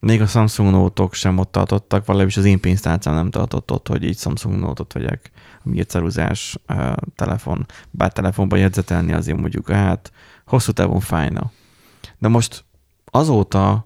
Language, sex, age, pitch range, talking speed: Hungarian, male, 20-39, 95-110 Hz, 155 wpm